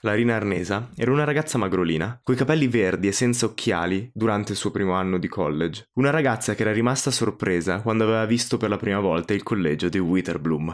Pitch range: 100-125 Hz